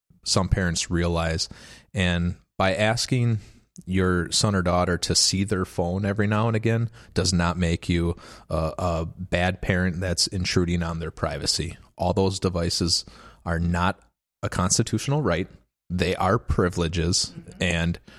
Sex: male